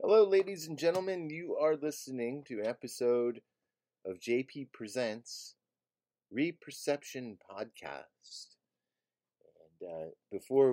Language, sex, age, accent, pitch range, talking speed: English, male, 30-49, American, 90-120 Hz, 100 wpm